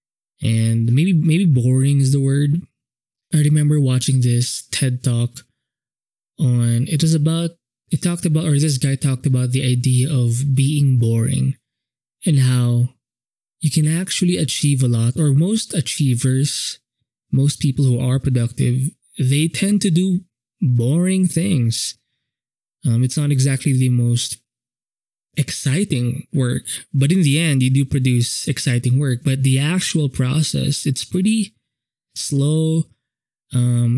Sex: male